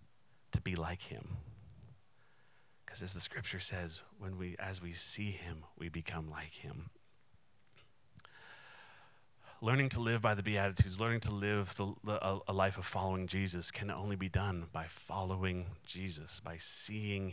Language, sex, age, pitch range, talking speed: English, male, 30-49, 90-105 Hz, 150 wpm